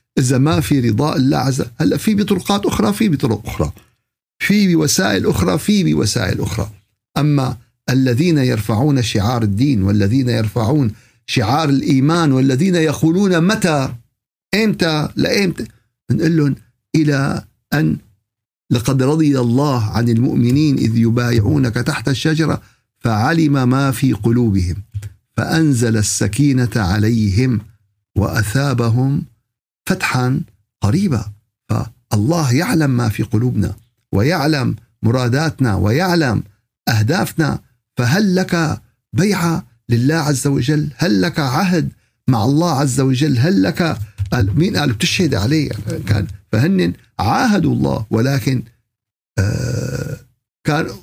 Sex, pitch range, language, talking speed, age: male, 110-150 Hz, Arabic, 105 wpm, 50-69